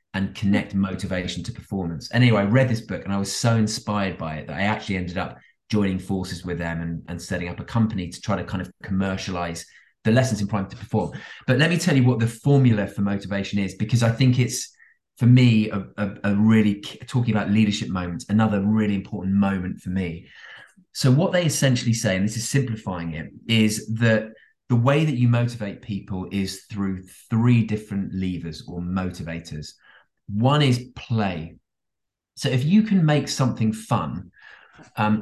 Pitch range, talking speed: 95-125 Hz, 190 wpm